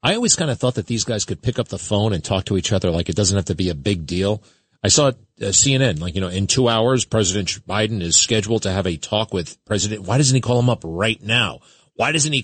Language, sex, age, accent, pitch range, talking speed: English, male, 40-59, American, 105-145 Hz, 280 wpm